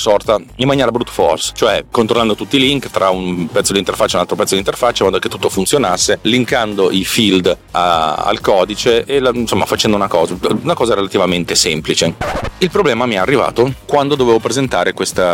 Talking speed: 200 wpm